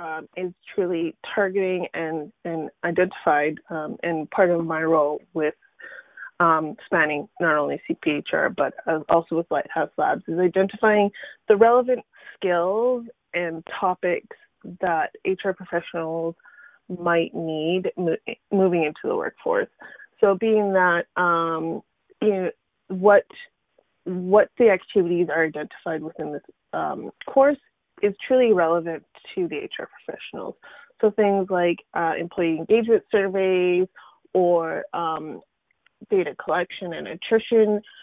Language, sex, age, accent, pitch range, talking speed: English, female, 20-39, American, 170-220 Hz, 120 wpm